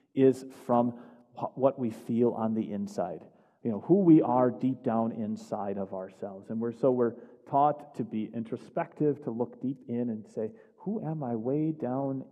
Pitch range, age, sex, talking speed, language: 120-160 Hz, 40-59, male, 175 wpm, English